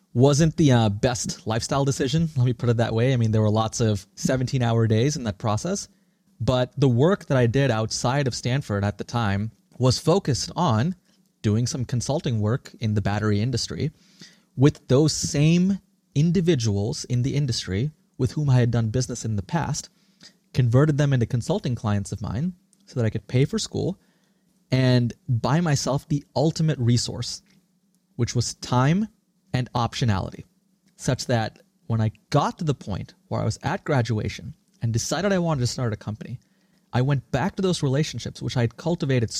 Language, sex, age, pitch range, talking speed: English, male, 30-49, 115-165 Hz, 180 wpm